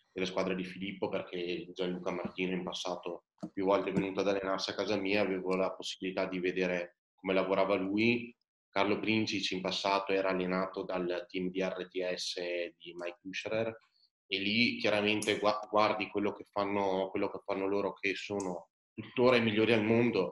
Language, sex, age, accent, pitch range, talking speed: Italian, male, 20-39, native, 90-100 Hz, 170 wpm